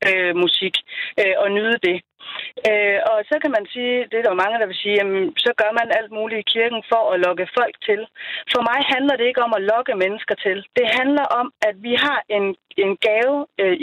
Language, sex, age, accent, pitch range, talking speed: Danish, female, 30-49, native, 205-285 Hz, 225 wpm